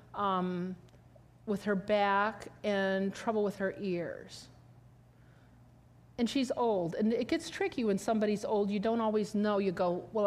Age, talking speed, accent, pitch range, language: 40-59, 150 wpm, American, 185-240 Hz, English